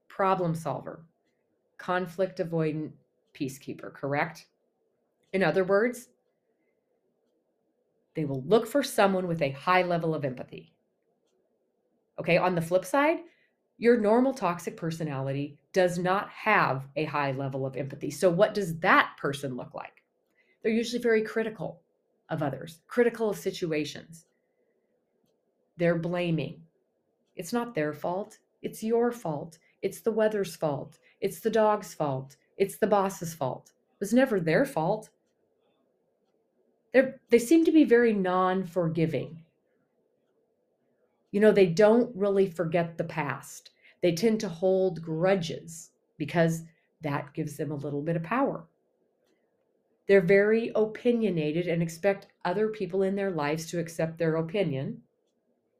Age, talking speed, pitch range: 30-49, 130 wpm, 165-215 Hz